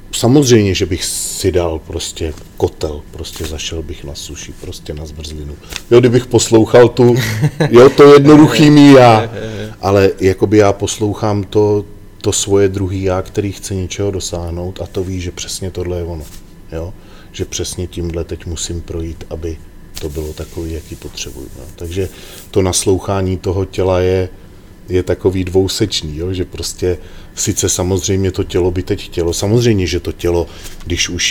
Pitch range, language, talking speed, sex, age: 85-95 Hz, Slovak, 155 wpm, male, 40-59